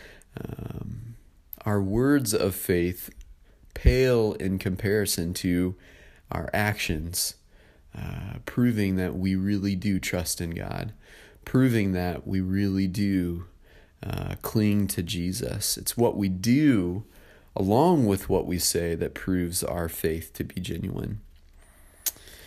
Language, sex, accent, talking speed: English, male, American, 120 wpm